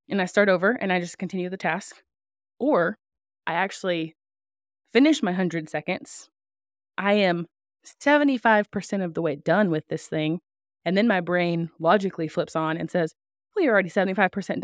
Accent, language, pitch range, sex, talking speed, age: American, English, 160-195 Hz, female, 165 wpm, 20-39